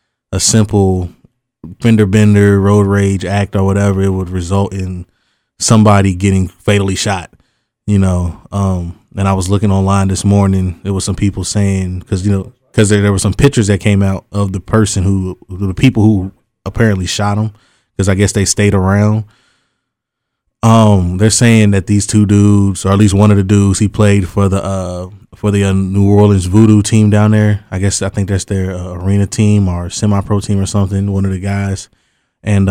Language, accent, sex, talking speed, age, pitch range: English, American, male, 200 wpm, 20-39, 95-105 Hz